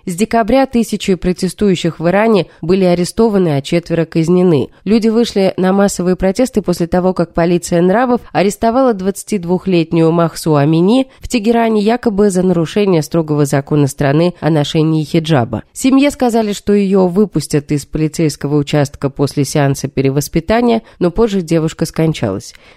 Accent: native